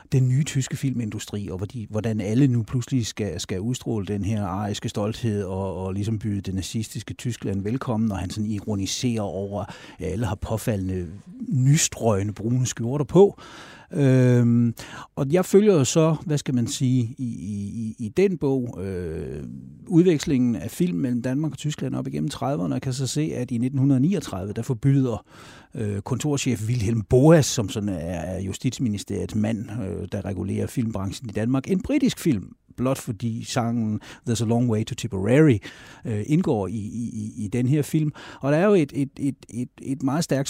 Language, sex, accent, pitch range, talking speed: Danish, male, native, 105-135 Hz, 170 wpm